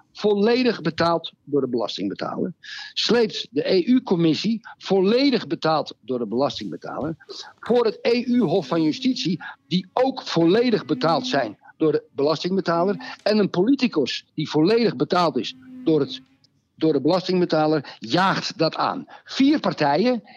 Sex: male